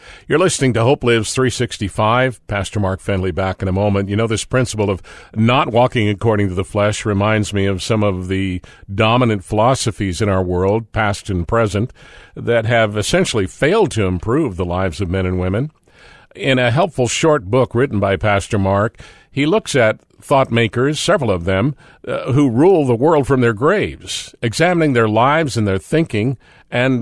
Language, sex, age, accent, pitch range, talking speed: English, male, 50-69, American, 100-130 Hz, 180 wpm